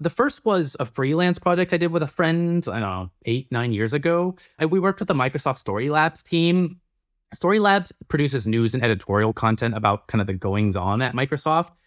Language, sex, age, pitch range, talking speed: English, male, 20-39, 110-155 Hz, 205 wpm